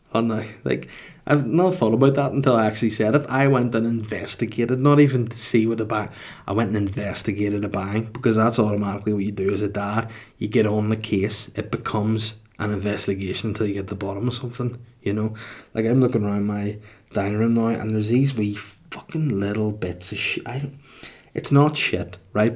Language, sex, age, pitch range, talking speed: English, male, 20-39, 105-125 Hz, 215 wpm